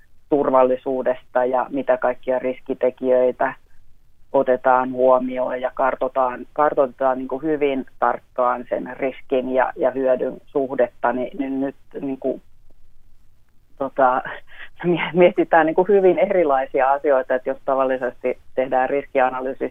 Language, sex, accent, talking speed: Finnish, female, native, 90 wpm